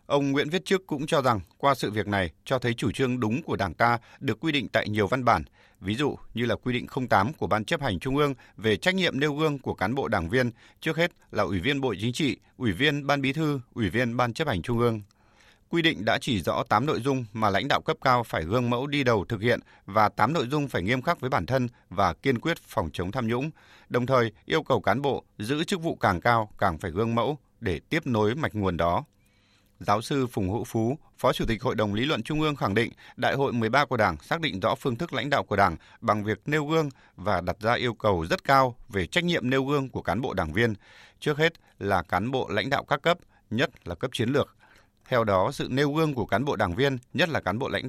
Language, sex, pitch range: Vietnamese, male, 105-140 Hz